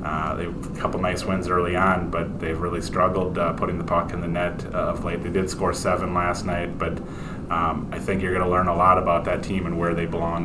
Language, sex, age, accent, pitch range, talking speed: English, male, 30-49, American, 85-100 Hz, 260 wpm